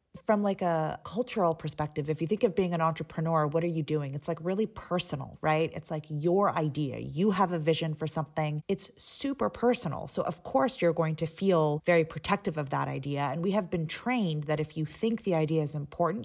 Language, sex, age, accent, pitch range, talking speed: English, female, 30-49, American, 155-185 Hz, 220 wpm